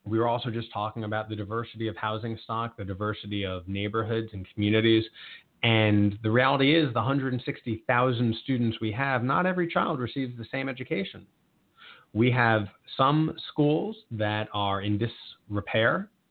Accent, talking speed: American, 150 wpm